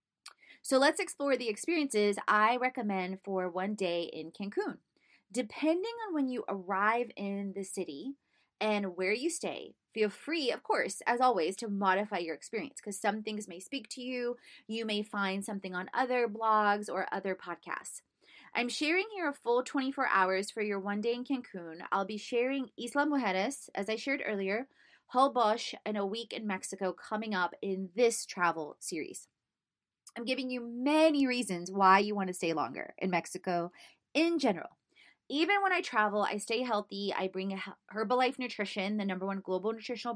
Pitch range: 195-245 Hz